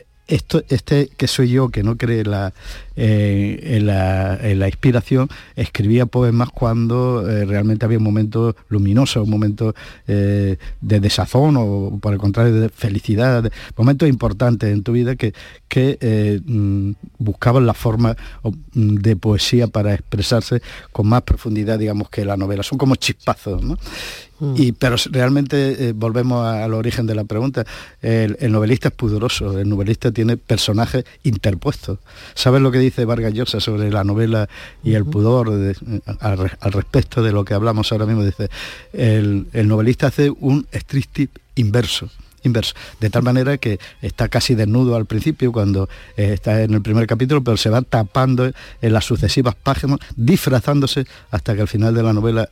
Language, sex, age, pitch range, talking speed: Spanish, male, 50-69, 105-125 Hz, 155 wpm